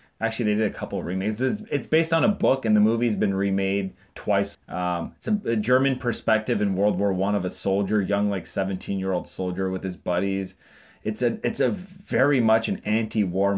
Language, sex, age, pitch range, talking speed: English, male, 20-39, 95-110 Hz, 205 wpm